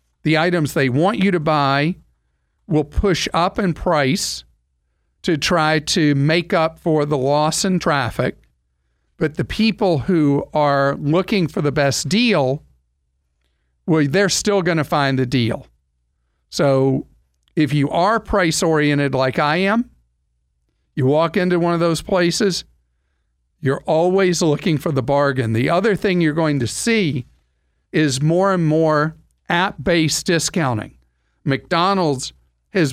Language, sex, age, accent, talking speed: English, male, 50-69, American, 140 wpm